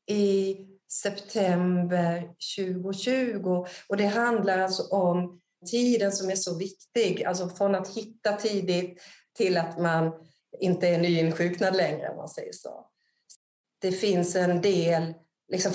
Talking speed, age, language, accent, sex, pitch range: 125 wpm, 30-49, Swedish, native, female, 175-200 Hz